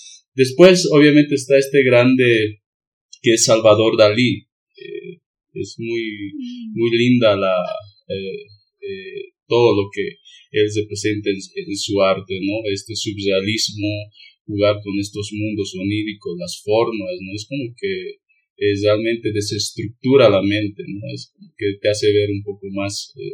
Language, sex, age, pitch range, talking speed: Spanish, male, 30-49, 105-135 Hz, 140 wpm